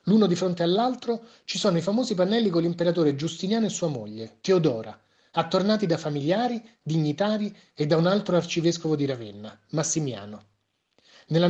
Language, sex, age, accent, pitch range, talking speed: Italian, male, 30-49, native, 140-205 Hz, 150 wpm